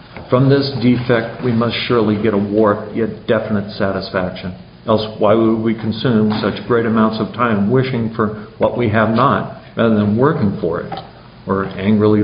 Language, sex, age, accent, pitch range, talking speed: English, male, 50-69, American, 100-115 Hz, 170 wpm